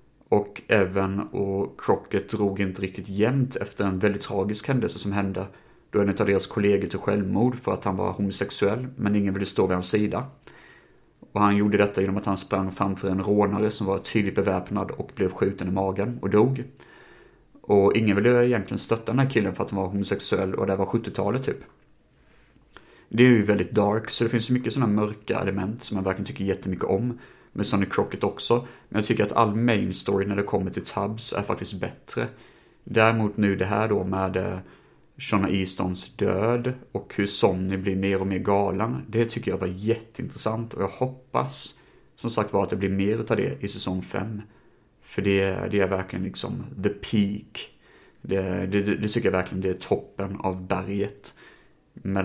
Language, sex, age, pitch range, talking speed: Swedish, male, 30-49, 95-110 Hz, 195 wpm